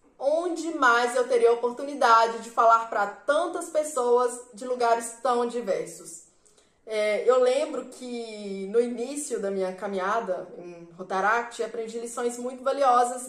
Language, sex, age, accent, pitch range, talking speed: Portuguese, female, 20-39, Brazilian, 220-270 Hz, 130 wpm